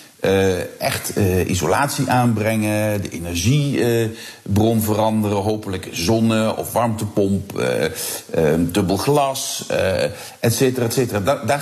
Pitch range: 95-115 Hz